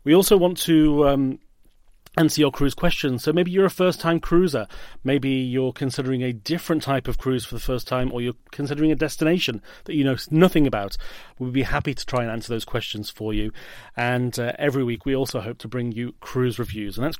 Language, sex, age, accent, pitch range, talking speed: English, male, 30-49, British, 115-145 Hz, 215 wpm